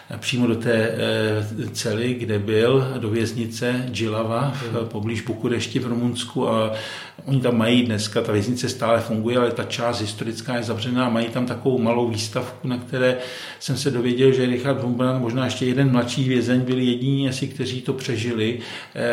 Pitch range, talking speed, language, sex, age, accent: 115-140 Hz, 165 wpm, Czech, male, 50-69, native